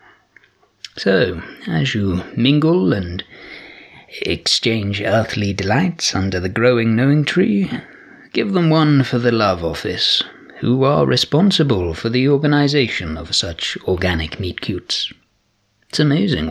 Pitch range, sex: 105-155 Hz, male